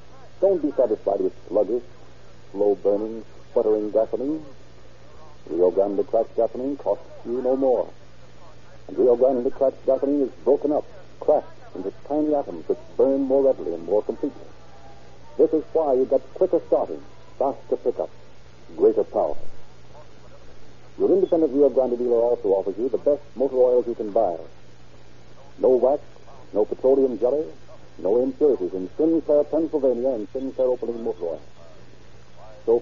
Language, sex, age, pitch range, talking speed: English, male, 70-89, 110-175 Hz, 140 wpm